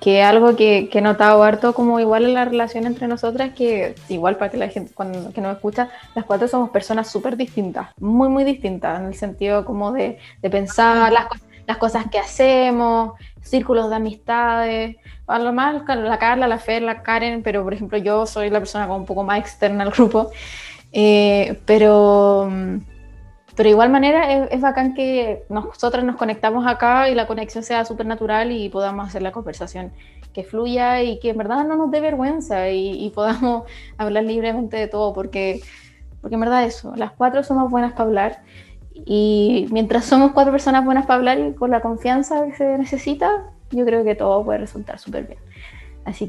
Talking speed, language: 190 wpm, Spanish